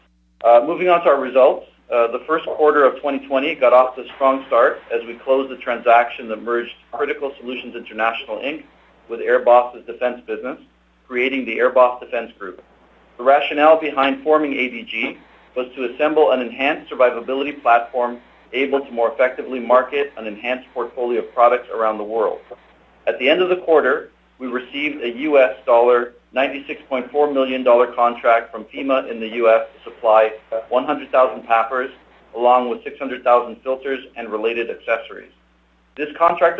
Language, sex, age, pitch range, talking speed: English, male, 40-59, 120-140 Hz, 155 wpm